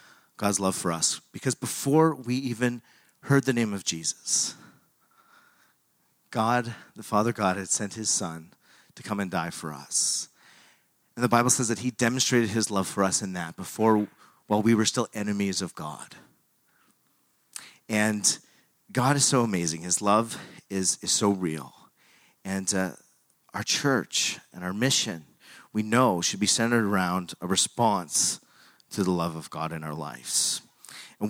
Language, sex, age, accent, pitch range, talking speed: English, male, 40-59, American, 90-120 Hz, 160 wpm